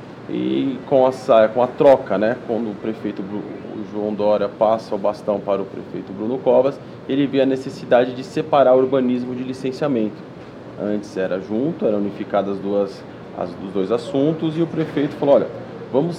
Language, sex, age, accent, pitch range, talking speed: Portuguese, male, 20-39, Brazilian, 115-150 Hz, 160 wpm